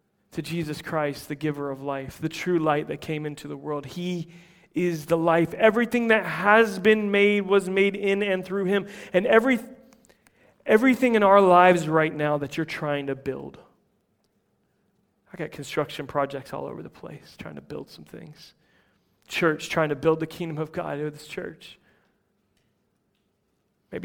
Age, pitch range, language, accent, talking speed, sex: 30-49, 155-190 Hz, English, American, 170 wpm, male